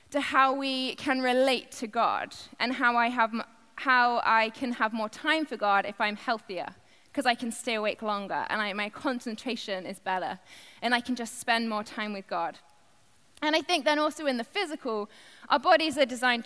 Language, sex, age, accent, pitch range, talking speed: English, female, 20-39, British, 235-295 Hz, 200 wpm